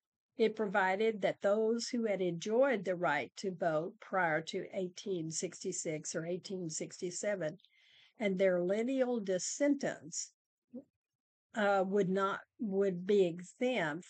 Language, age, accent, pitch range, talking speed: English, 50-69, American, 180-215 Hz, 100 wpm